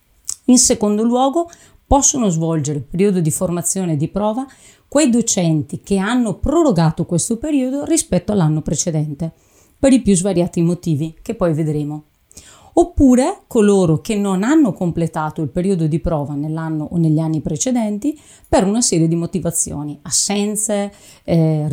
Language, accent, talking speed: Italian, native, 145 wpm